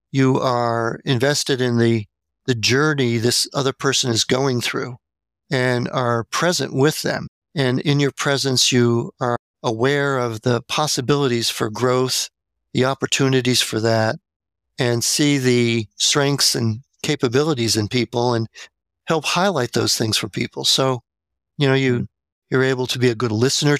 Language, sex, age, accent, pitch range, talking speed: English, male, 50-69, American, 120-140 Hz, 150 wpm